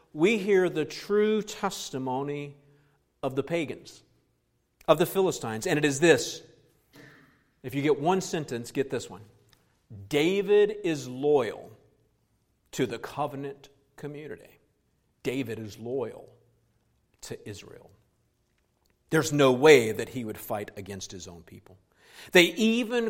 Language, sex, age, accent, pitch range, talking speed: English, male, 50-69, American, 125-180 Hz, 125 wpm